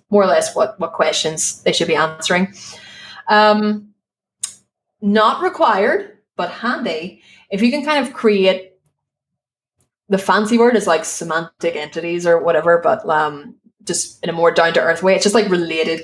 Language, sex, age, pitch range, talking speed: English, female, 20-39, 170-205 Hz, 165 wpm